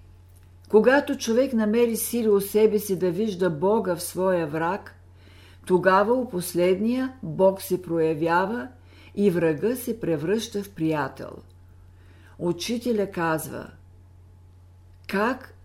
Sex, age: female, 50-69